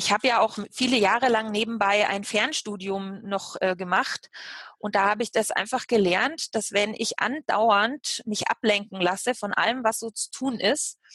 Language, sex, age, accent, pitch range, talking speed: German, female, 30-49, German, 205-265 Hz, 180 wpm